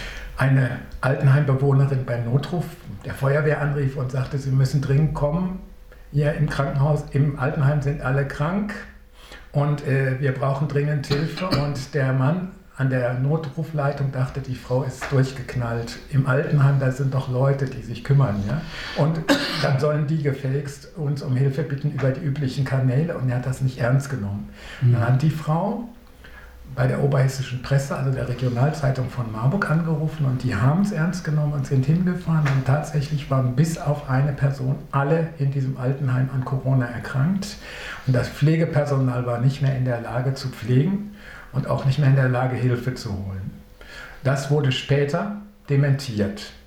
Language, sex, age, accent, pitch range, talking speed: English, male, 60-79, German, 130-150 Hz, 165 wpm